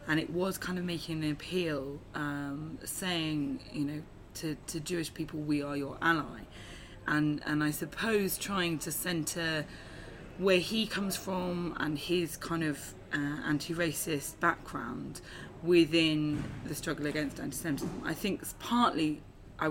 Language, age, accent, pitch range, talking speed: English, 20-39, British, 150-170 Hz, 145 wpm